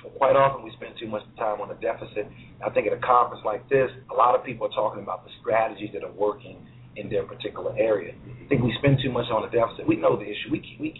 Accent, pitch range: American, 110-140 Hz